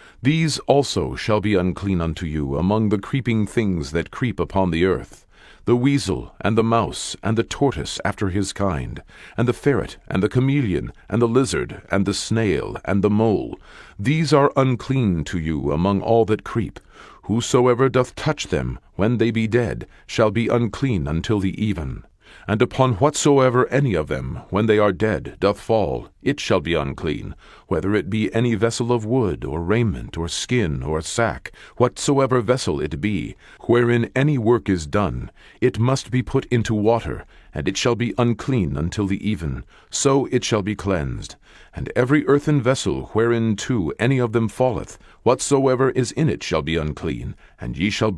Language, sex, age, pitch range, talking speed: English, male, 50-69, 95-125 Hz, 175 wpm